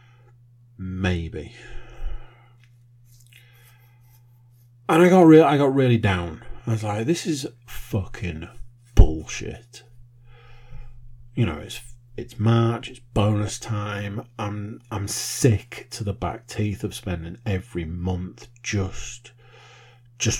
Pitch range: 90-120 Hz